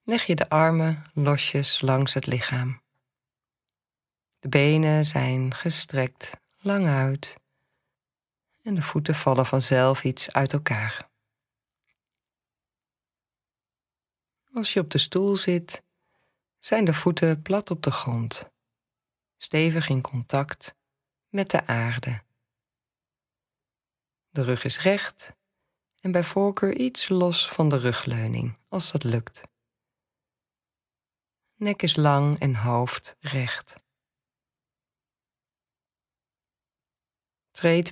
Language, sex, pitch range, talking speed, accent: Dutch, female, 130-175 Hz, 100 wpm, Dutch